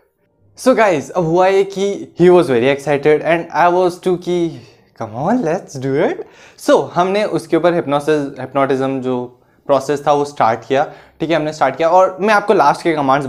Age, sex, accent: 20-39, male, native